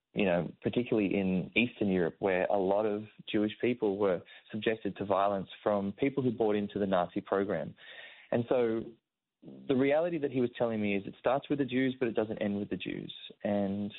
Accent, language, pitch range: Australian, English, 95-120 Hz